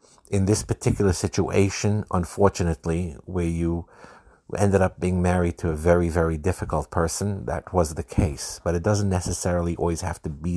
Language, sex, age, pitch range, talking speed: English, male, 50-69, 80-95 Hz, 165 wpm